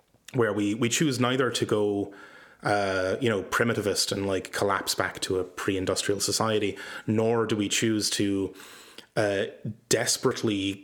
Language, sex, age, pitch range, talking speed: English, male, 20-39, 100-115 Hz, 145 wpm